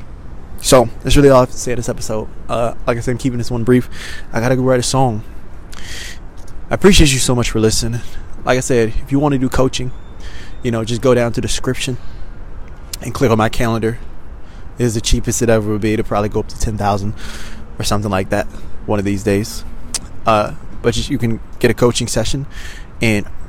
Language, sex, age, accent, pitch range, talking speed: English, male, 20-39, American, 100-125 Hz, 220 wpm